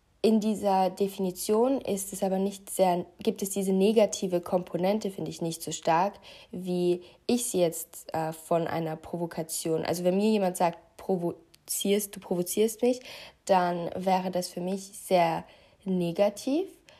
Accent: German